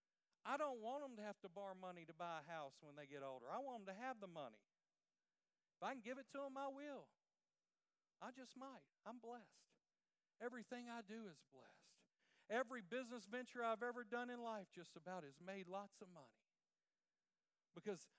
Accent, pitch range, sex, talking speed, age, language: American, 185-240 Hz, male, 195 wpm, 50-69, English